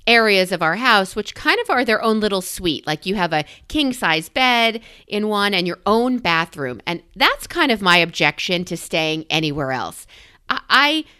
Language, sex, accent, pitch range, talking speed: English, female, American, 170-265 Hz, 190 wpm